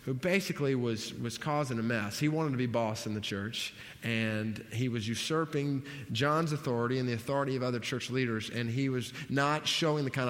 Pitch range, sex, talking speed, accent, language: 120-160 Hz, male, 205 wpm, American, English